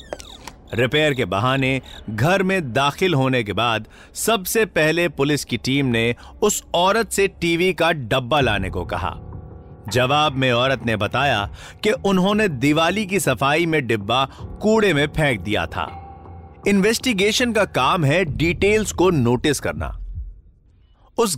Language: Hindi